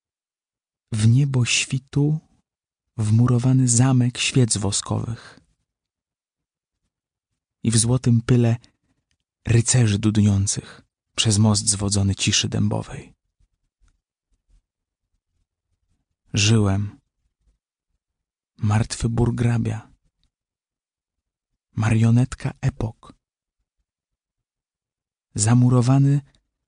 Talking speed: 55 wpm